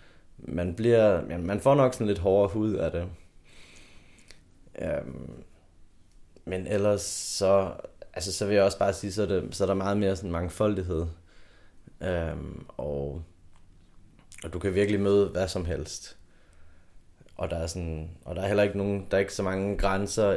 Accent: native